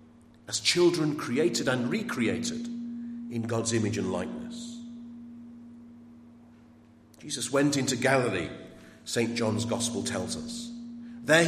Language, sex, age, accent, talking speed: English, male, 50-69, British, 105 wpm